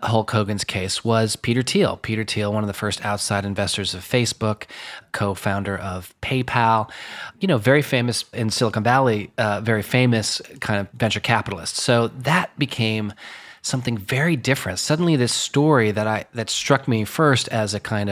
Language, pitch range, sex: English, 100-120 Hz, male